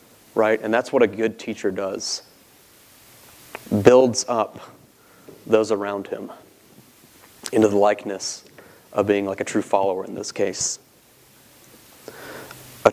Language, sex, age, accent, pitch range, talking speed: English, male, 30-49, American, 100-115 Hz, 120 wpm